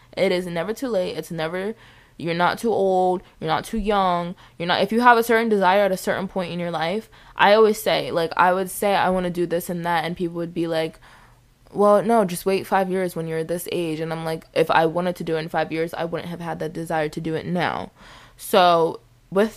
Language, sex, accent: English, female, American